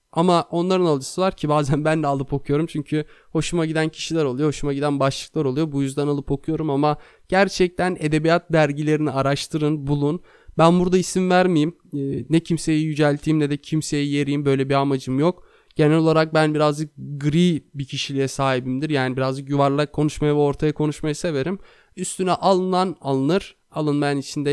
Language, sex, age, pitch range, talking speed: Turkish, male, 20-39, 140-160 Hz, 160 wpm